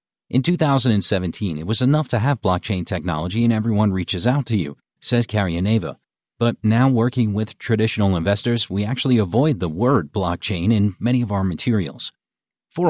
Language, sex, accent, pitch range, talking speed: English, male, American, 100-125 Hz, 165 wpm